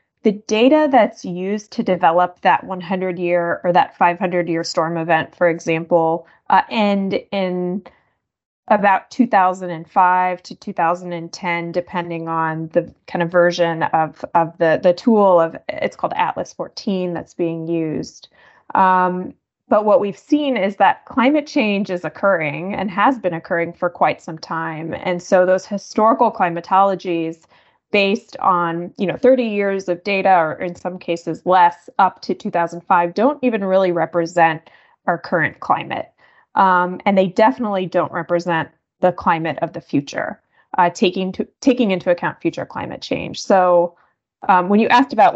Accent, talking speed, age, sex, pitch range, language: American, 145 wpm, 20-39, female, 170-200 Hz, English